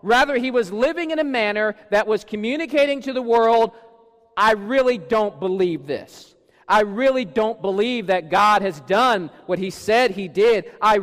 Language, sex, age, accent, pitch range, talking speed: English, male, 40-59, American, 155-220 Hz, 175 wpm